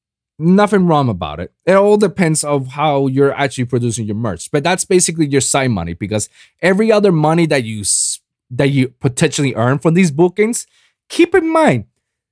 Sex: male